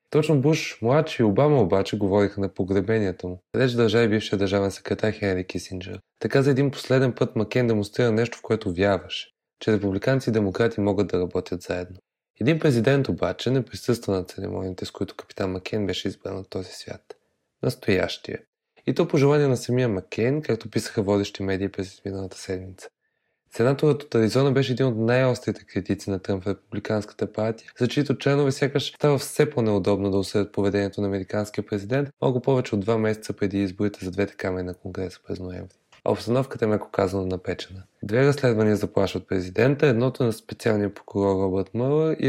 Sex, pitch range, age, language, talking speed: male, 100-125 Hz, 20-39, Bulgarian, 175 wpm